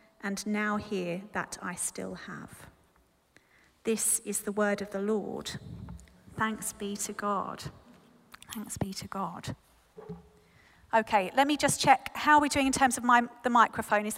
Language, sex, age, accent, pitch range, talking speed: English, female, 40-59, British, 220-275 Hz, 160 wpm